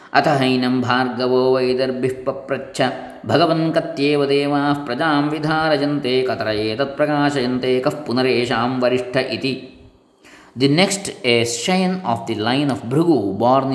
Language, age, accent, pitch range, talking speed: English, 20-39, Indian, 120-140 Hz, 105 wpm